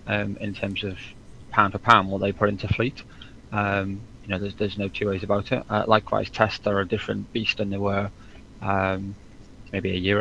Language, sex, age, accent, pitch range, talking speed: English, male, 20-39, British, 100-110 Hz, 210 wpm